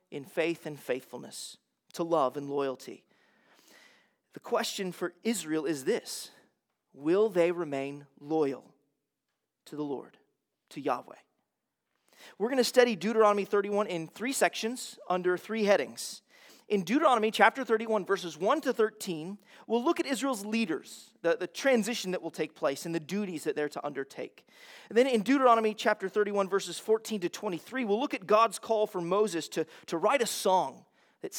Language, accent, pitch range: English, American, 165-220 Hz